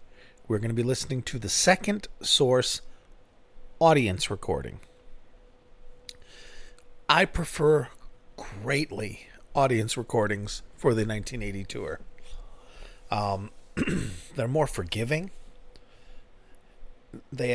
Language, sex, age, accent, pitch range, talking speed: English, male, 40-59, American, 105-145 Hz, 85 wpm